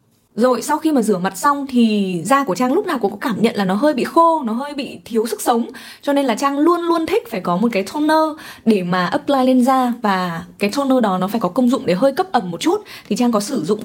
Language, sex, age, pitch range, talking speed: Vietnamese, female, 20-39, 205-270 Hz, 280 wpm